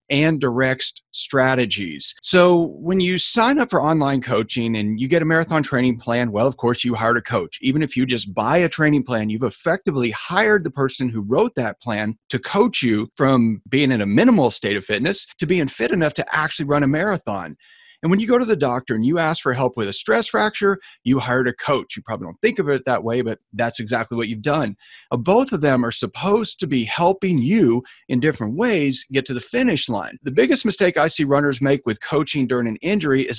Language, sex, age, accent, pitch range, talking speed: English, male, 40-59, American, 125-180 Hz, 225 wpm